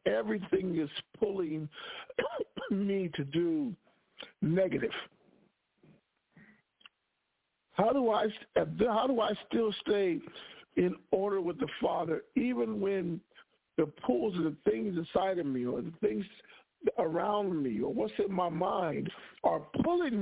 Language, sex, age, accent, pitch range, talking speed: English, male, 50-69, American, 170-225 Hz, 125 wpm